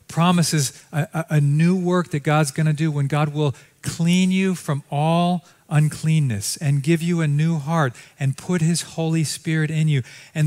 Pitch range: 115-150 Hz